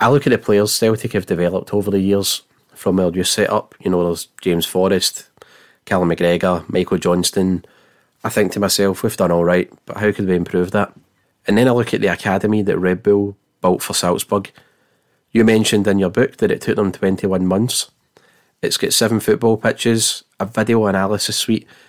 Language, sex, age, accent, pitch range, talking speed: English, male, 30-49, British, 95-115 Hz, 195 wpm